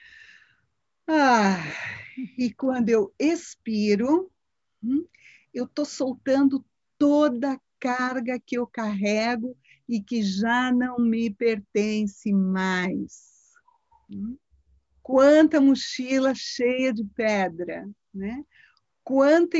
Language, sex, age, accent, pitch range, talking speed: Portuguese, female, 50-69, Brazilian, 235-305 Hz, 85 wpm